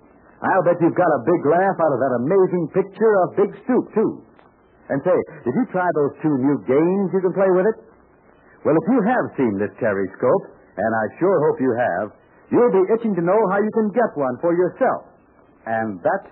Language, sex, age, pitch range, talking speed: English, male, 60-79, 150-210 Hz, 215 wpm